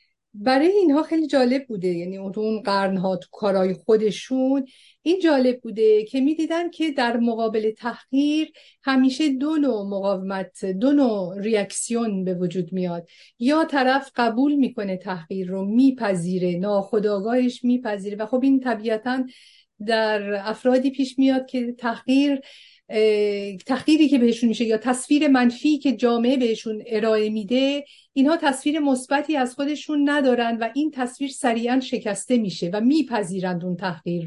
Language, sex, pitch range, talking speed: English, female, 210-265 Hz, 135 wpm